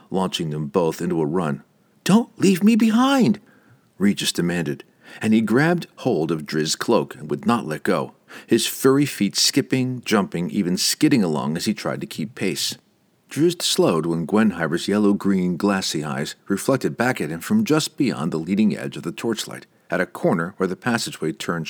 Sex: male